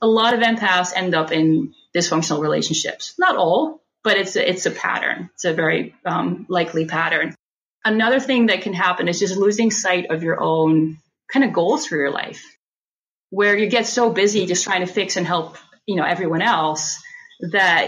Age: 30-49